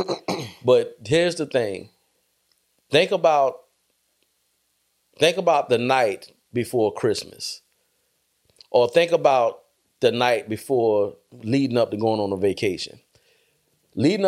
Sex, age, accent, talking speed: male, 30-49, American, 110 wpm